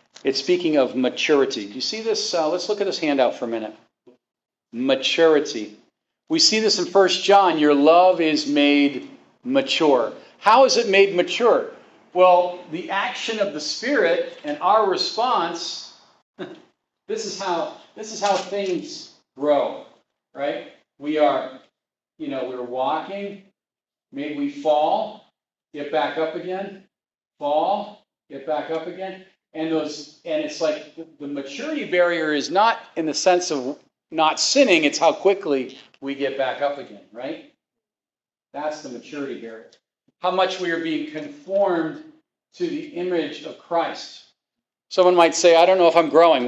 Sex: male